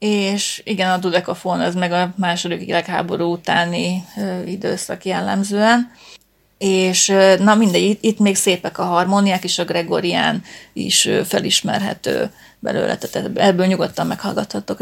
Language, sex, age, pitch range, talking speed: Hungarian, female, 30-49, 180-205 Hz, 120 wpm